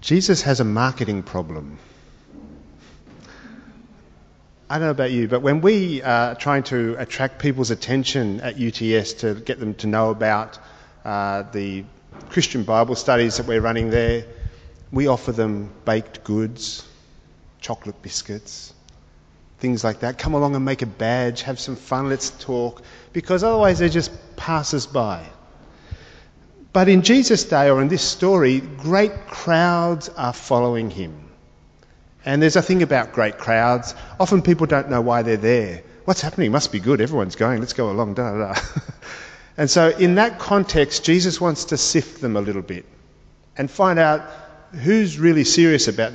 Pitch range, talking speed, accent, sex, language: 105-150 Hz, 155 wpm, Australian, male, English